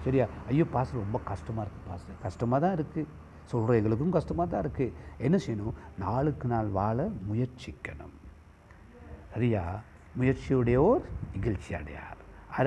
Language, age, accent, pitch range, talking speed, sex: Tamil, 60-79, native, 100-150 Hz, 100 wpm, male